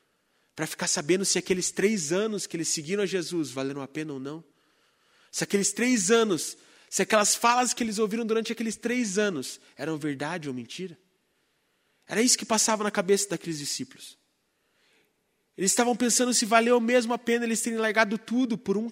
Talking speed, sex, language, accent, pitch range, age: 180 wpm, male, Portuguese, Brazilian, 165-215 Hz, 20-39